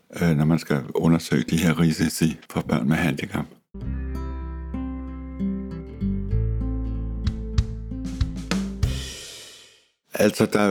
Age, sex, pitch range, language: 60-79, male, 80-100 Hz, Danish